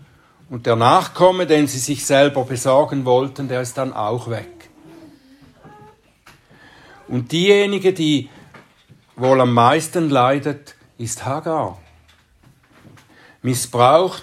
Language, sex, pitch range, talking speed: German, male, 120-155 Hz, 100 wpm